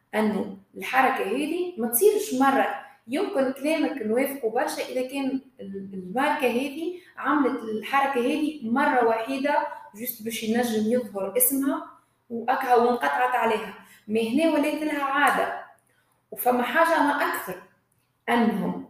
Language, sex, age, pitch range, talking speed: Arabic, female, 20-39, 205-280 Hz, 115 wpm